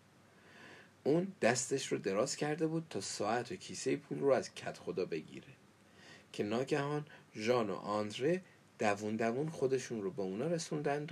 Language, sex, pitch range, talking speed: Persian, male, 110-140 Hz, 150 wpm